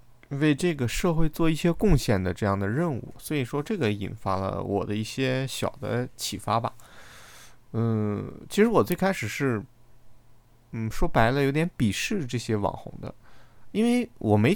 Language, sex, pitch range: Chinese, male, 110-145 Hz